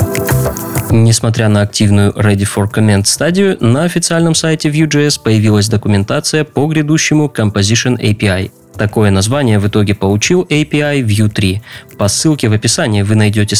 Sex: male